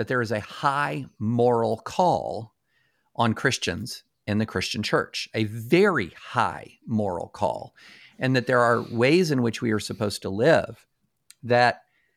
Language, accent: English, American